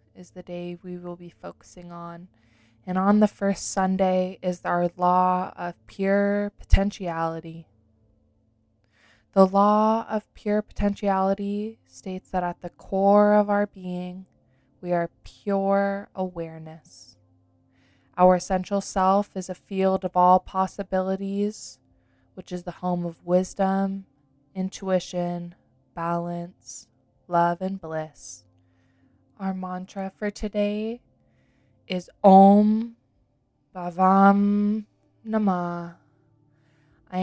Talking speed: 105 wpm